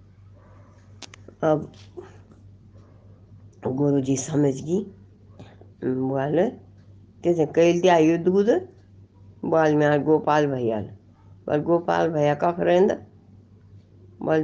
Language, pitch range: Hindi, 100-160 Hz